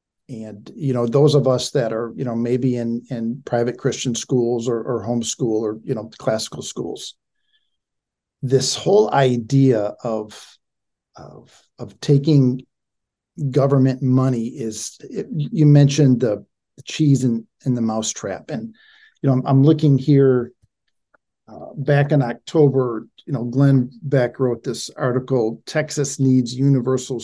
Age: 50-69